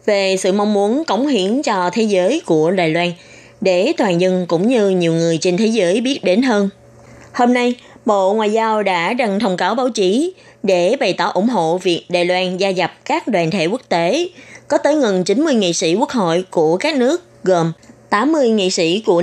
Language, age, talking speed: Vietnamese, 20-39, 210 wpm